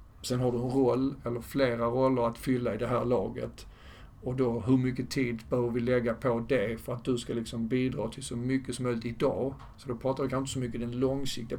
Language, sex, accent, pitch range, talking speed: Swedish, male, native, 115-130 Hz, 240 wpm